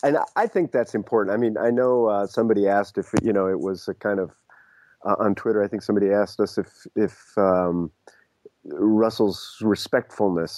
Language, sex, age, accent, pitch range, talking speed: English, male, 30-49, American, 90-110 Hz, 185 wpm